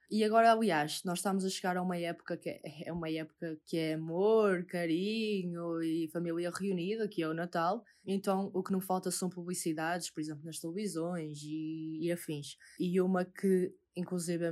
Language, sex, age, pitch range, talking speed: Portuguese, female, 20-39, 170-210 Hz, 180 wpm